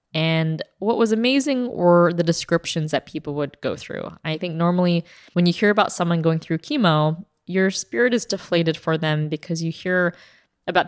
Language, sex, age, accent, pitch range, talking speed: English, female, 20-39, American, 160-205 Hz, 180 wpm